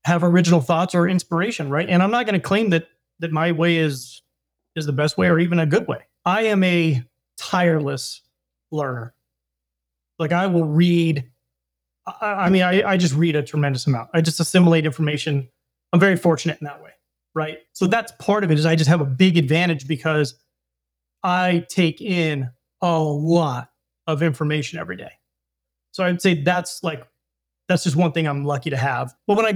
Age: 30-49